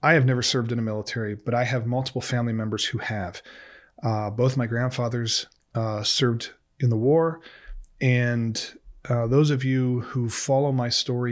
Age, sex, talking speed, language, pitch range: 30-49, male, 175 wpm, English, 115-135 Hz